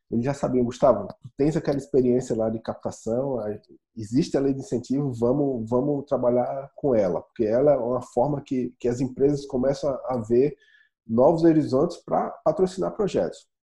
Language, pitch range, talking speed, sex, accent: English, 110-135 Hz, 165 wpm, male, Brazilian